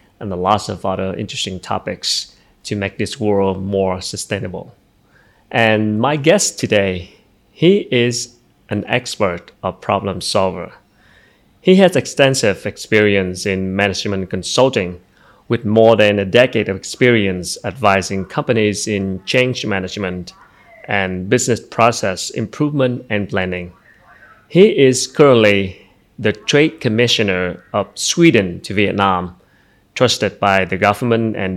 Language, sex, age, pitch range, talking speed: Vietnamese, male, 30-49, 95-120 Hz, 120 wpm